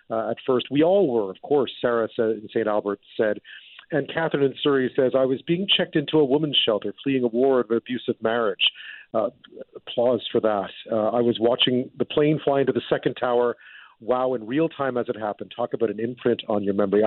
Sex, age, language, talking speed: male, 40-59, English, 220 wpm